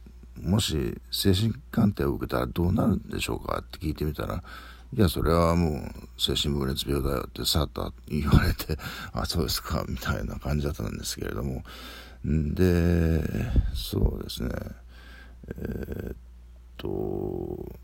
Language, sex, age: Japanese, male, 60-79